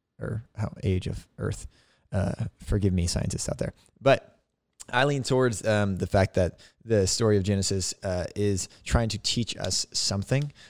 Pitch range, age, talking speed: 95-110 Hz, 20-39, 170 wpm